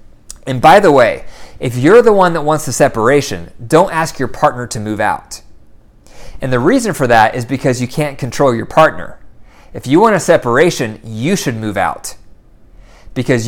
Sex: male